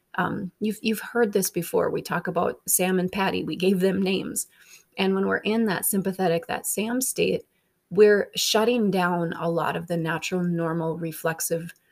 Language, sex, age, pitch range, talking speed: English, female, 30-49, 170-210 Hz, 175 wpm